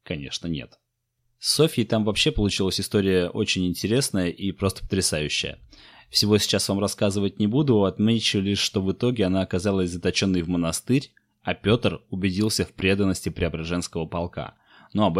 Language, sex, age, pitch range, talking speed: Russian, male, 20-39, 95-115 Hz, 150 wpm